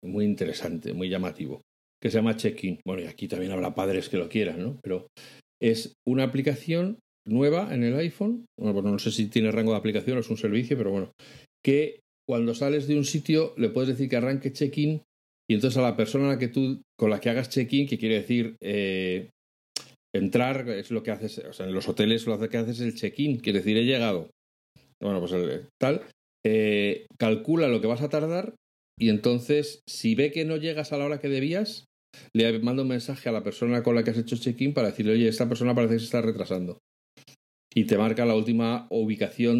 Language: Spanish